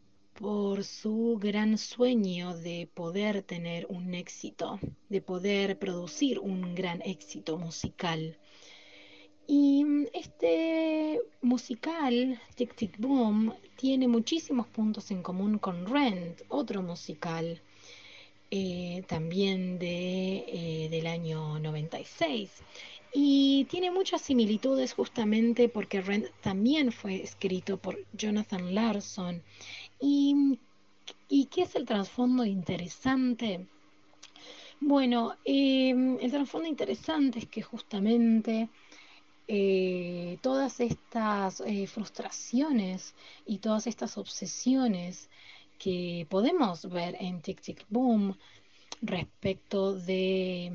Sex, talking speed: female, 100 wpm